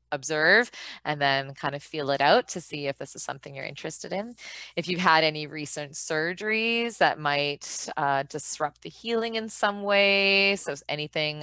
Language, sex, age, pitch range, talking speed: English, female, 20-39, 150-195 Hz, 180 wpm